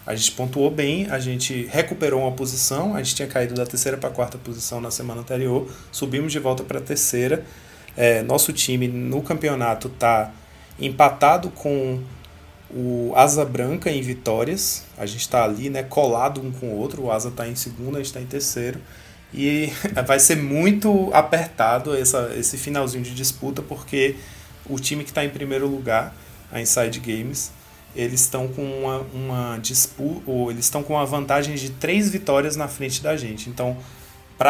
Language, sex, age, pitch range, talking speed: Portuguese, male, 20-39, 120-150 Hz, 170 wpm